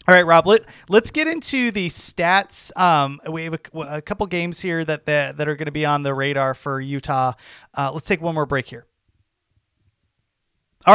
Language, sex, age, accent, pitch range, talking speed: English, male, 30-49, American, 135-180 Hz, 205 wpm